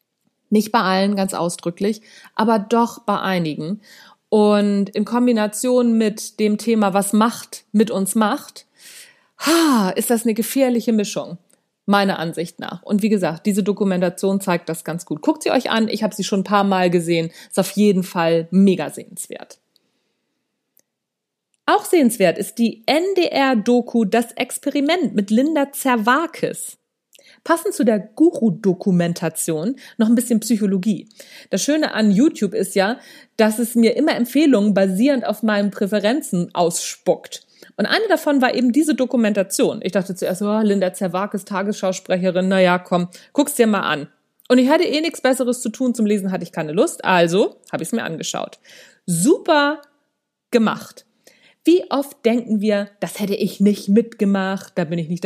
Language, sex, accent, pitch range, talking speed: German, female, German, 195-250 Hz, 155 wpm